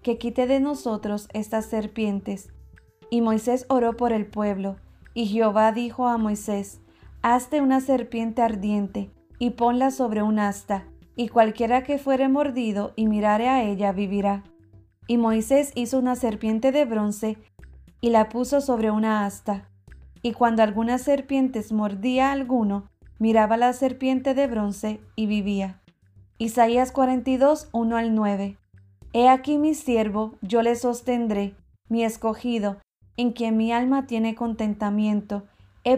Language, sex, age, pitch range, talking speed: English, female, 30-49, 210-250 Hz, 140 wpm